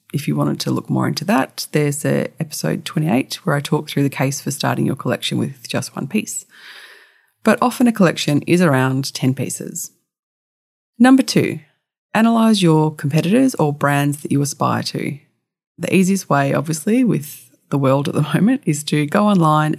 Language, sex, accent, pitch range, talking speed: English, female, Australian, 145-195 Hz, 175 wpm